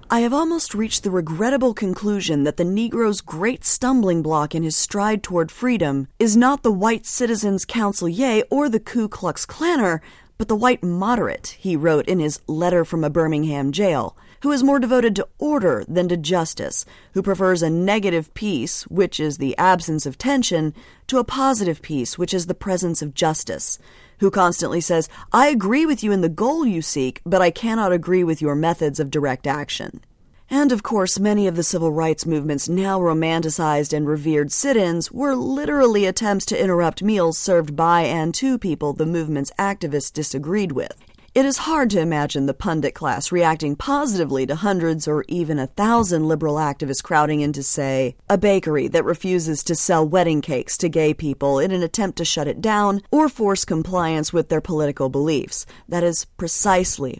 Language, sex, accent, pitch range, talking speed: English, female, American, 155-215 Hz, 185 wpm